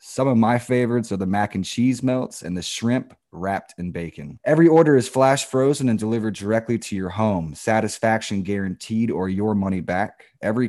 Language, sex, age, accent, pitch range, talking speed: English, male, 20-39, American, 100-120 Hz, 190 wpm